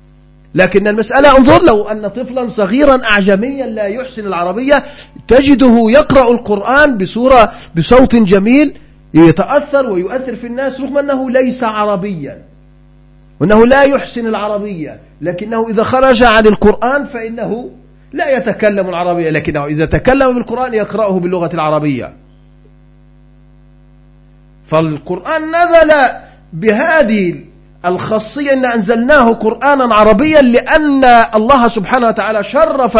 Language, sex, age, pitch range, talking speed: Arabic, male, 40-59, 200-270 Hz, 105 wpm